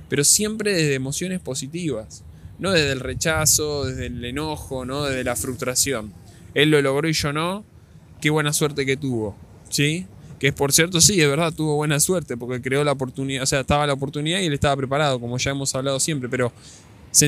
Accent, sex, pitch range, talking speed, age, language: Argentinian, male, 125-155 Hz, 200 wpm, 10-29, Spanish